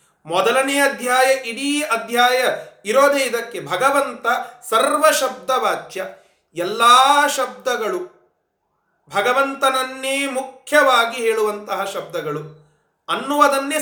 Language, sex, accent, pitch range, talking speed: Kannada, male, native, 200-285 Hz, 75 wpm